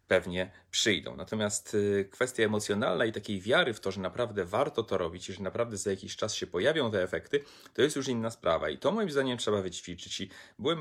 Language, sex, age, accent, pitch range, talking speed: Polish, male, 30-49, native, 100-125 Hz, 210 wpm